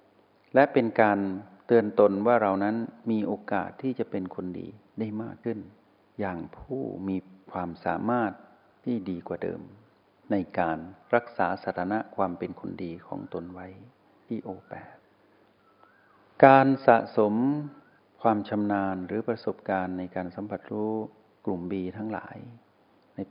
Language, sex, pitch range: Thai, male, 95-115 Hz